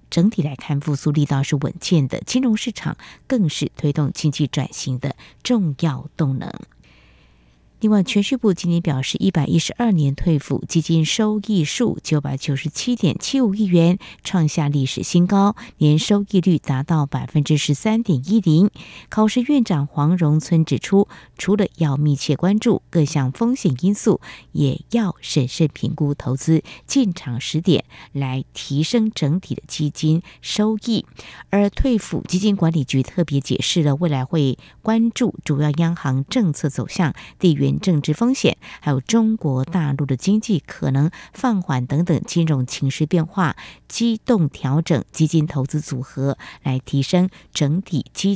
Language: Chinese